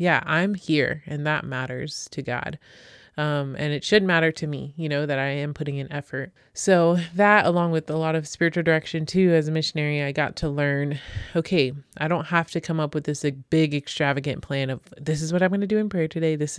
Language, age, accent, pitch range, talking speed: English, 20-39, American, 140-165 Hz, 230 wpm